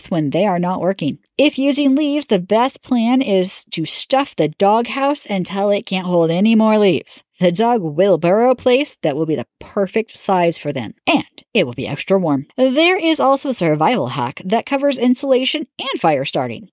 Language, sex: English, female